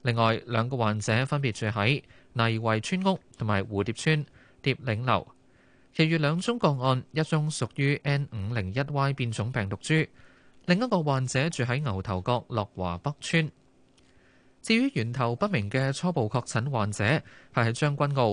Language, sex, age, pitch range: Chinese, male, 20-39, 110-145 Hz